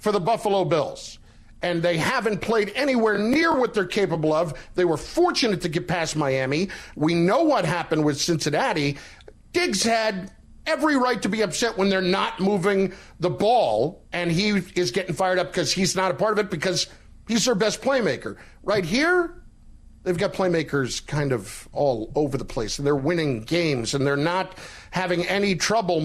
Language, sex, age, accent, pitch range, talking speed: English, male, 50-69, American, 155-200 Hz, 180 wpm